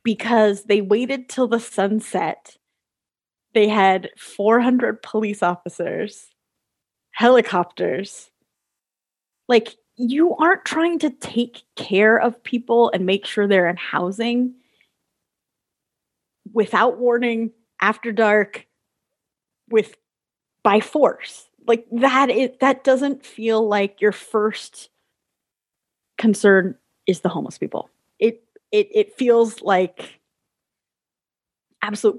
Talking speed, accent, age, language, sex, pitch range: 100 wpm, American, 20-39, English, female, 210-270 Hz